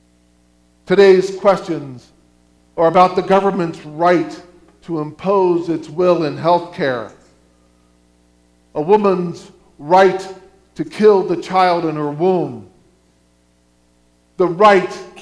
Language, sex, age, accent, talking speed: English, male, 50-69, American, 105 wpm